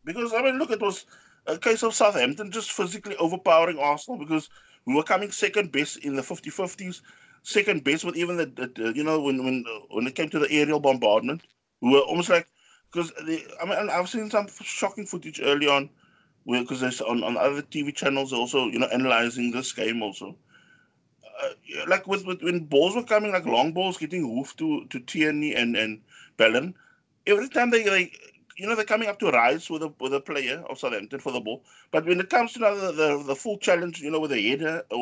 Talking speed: 225 wpm